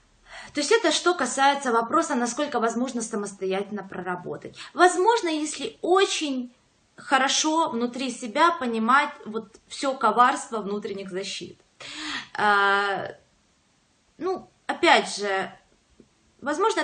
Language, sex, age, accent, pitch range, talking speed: Russian, female, 20-39, native, 215-310 Hz, 95 wpm